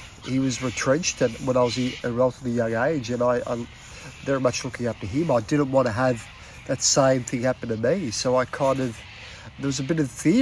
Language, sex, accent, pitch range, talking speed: English, male, Australian, 120-145 Hz, 240 wpm